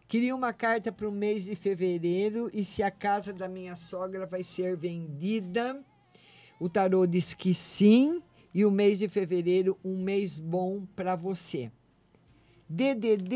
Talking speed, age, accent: 155 wpm, 50-69, Brazilian